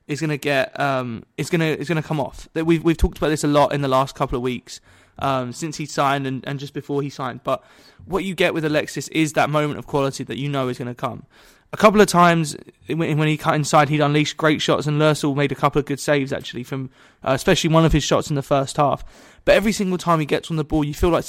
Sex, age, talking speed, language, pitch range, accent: male, 20-39, 260 wpm, English, 135-160 Hz, British